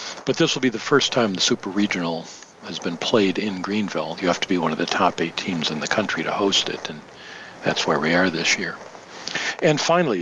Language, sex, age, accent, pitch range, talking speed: English, male, 50-69, American, 90-125 Hz, 235 wpm